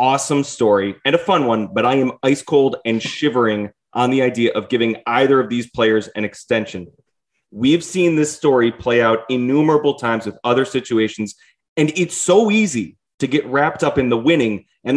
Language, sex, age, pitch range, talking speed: English, male, 30-49, 120-165 Hz, 190 wpm